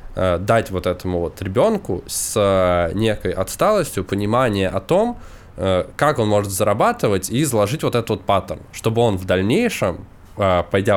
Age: 20-39